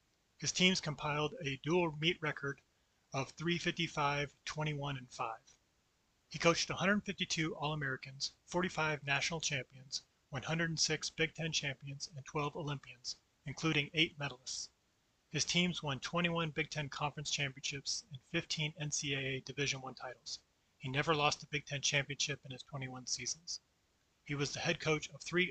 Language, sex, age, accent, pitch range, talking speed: English, male, 30-49, American, 135-155 Hz, 140 wpm